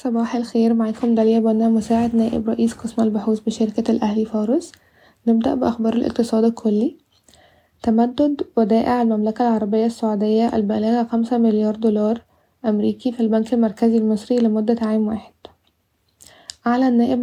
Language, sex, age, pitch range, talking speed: Arabic, female, 10-29, 220-240 Hz, 115 wpm